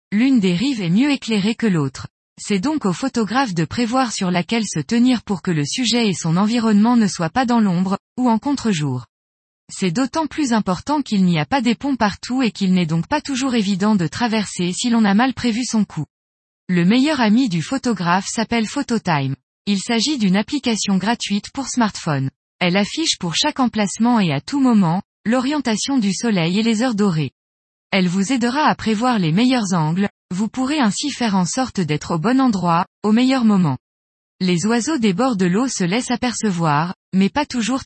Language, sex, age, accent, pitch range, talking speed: French, female, 20-39, French, 180-245 Hz, 195 wpm